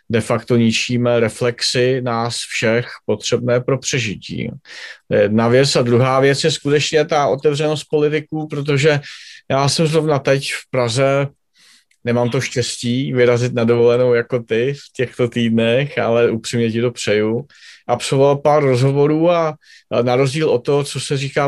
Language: Czech